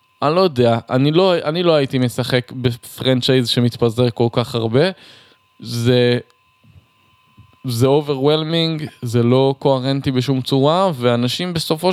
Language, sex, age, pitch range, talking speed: Hebrew, male, 20-39, 120-155 Hz, 120 wpm